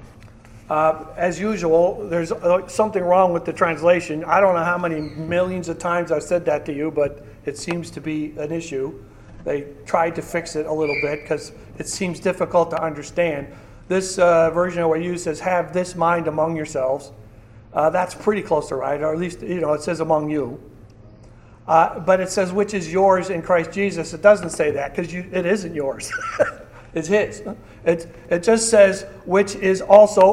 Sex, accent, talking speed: male, American, 195 wpm